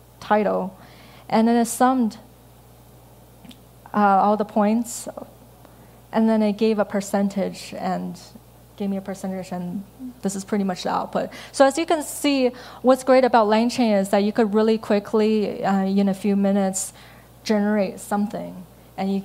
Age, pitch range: 20-39, 190-220 Hz